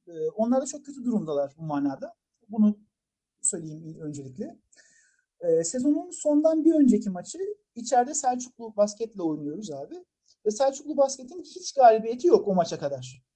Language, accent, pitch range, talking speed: Turkish, native, 210-335 Hz, 130 wpm